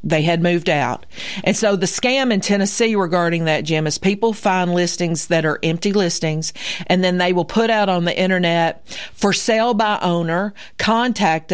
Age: 50-69